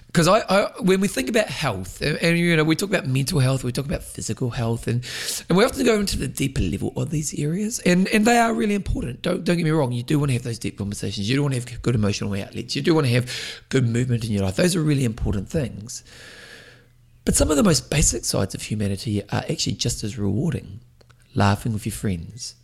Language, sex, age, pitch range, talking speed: English, male, 30-49, 115-160 Hz, 250 wpm